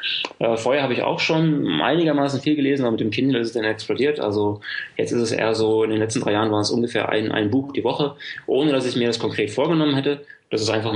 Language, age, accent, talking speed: German, 20-39, German, 255 wpm